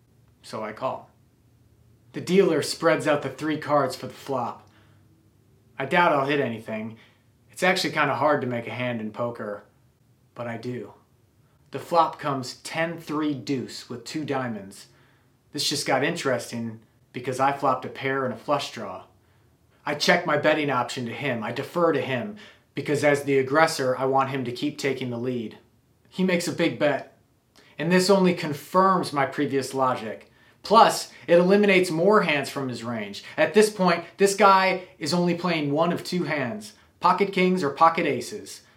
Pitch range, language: 125-165 Hz, English